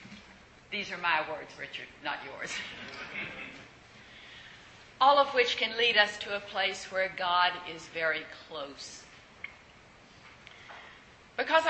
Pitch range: 175-230 Hz